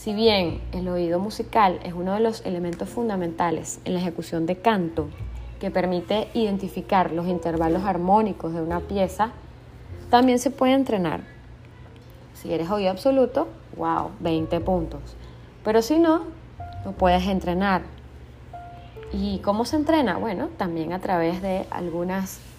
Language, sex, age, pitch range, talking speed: Spanish, female, 20-39, 165-220 Hz, 140 wpm